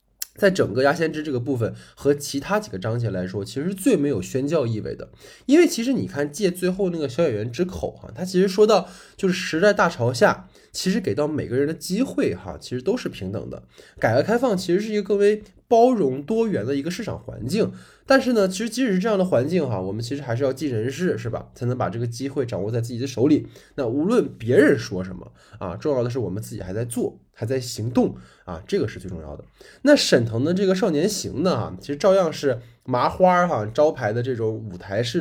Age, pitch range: 20-39, 115-180 Hz